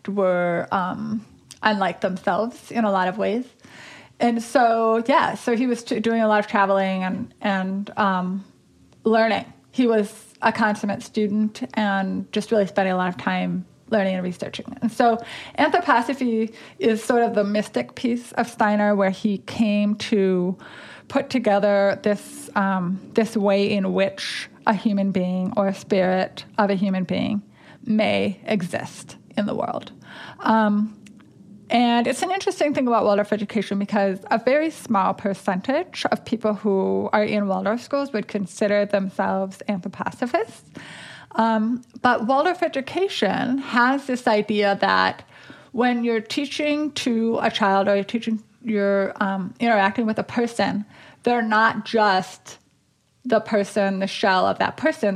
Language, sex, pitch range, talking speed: English, female, 195-235 Hz, 145 wpm